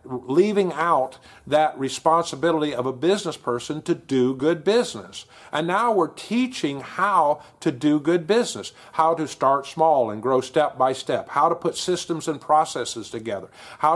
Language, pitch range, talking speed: English, 130-165 Hz, 165 wpm